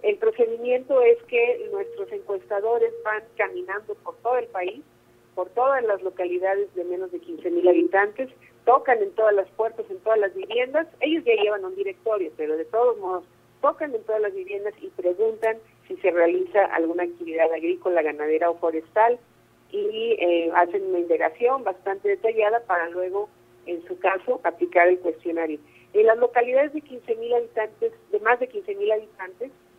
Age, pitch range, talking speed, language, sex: 50-69, 175-285 Hz, 170 wpm, Spanish, female